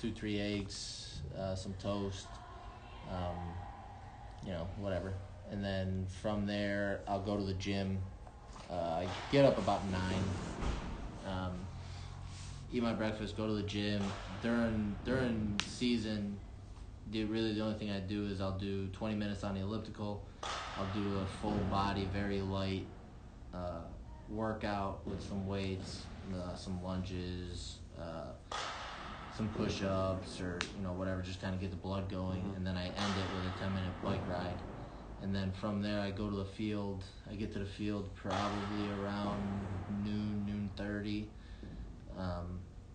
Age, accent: 30-49, American